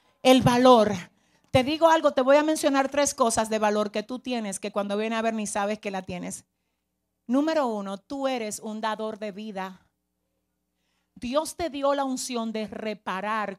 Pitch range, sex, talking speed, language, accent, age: 210-270 Hz, female, 180 wpm, Spanish, American, 40-59